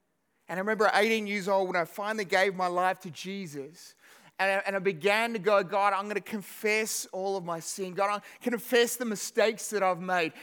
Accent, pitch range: Australian, 185-230 Hz